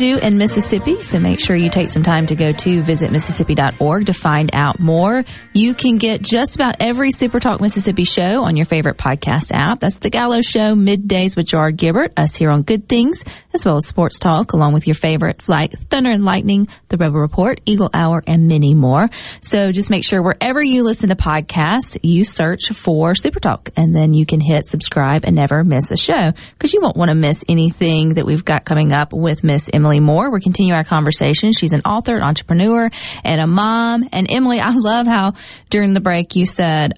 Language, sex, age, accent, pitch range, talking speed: English, female, 40-59, American, 165-230 Hz, 210 wpm